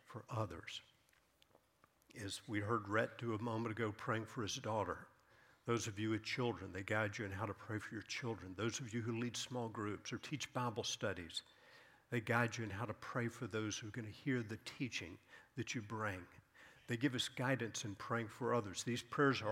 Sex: male